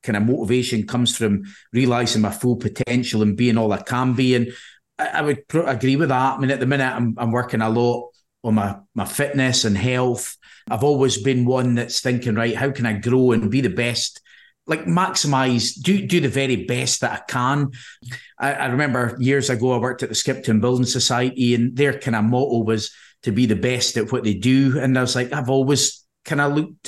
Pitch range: 120-135 Hz